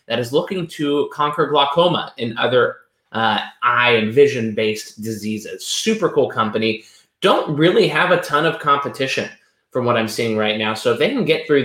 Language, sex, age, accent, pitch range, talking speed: English, male, 20-39, American, 110-150 Hz, 180 wpm